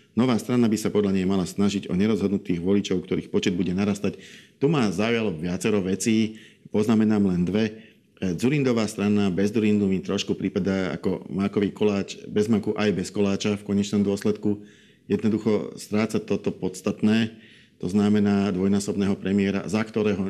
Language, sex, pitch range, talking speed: Slovak, male, 100-110 Hz, 150 wpm